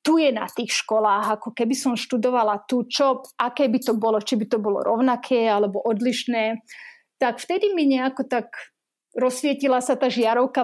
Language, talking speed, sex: Slovak, 175 wpm, female